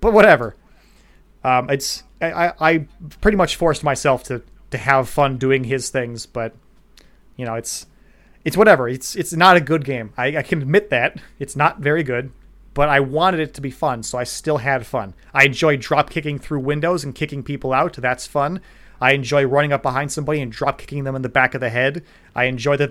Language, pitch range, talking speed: English, 130-160 Hz, 205 wpm